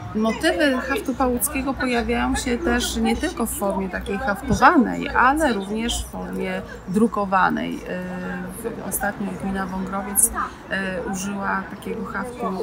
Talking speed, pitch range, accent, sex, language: 110 wpm, 195-240 Hz, native, female, Polish